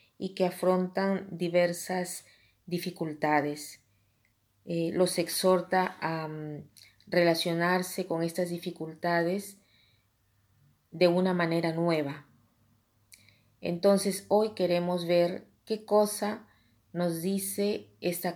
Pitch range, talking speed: 155-190 Hz, 85 wpm